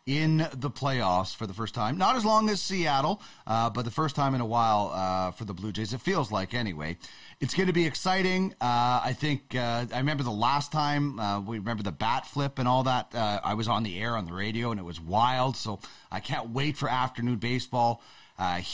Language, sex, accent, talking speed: English, male, American, 235 wpm